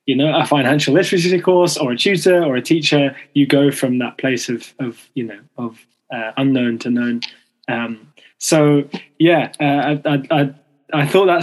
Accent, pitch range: British, 130-160 Hz